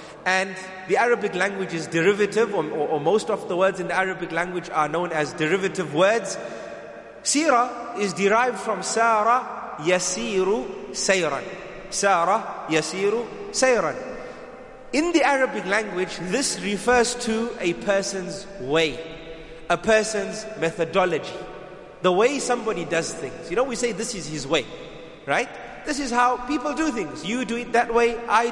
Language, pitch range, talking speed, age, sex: English, 190-240 Hz, 150 wpm, 30-49, male